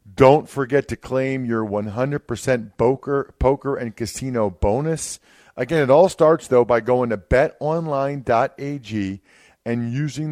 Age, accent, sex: 40-59, American, male